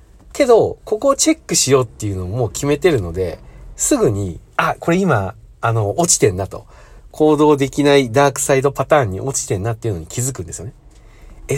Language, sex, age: Japanese, male, 40-59